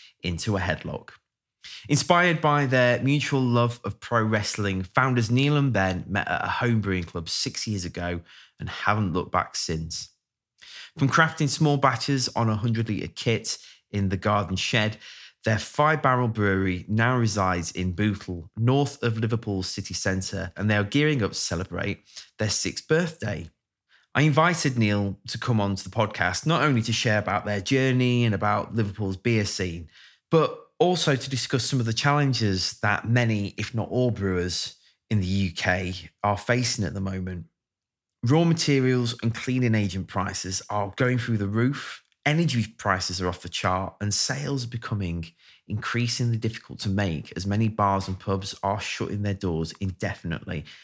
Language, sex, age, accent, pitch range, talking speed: English, male, 20-39, British, 95-125 Hz, 165 wpm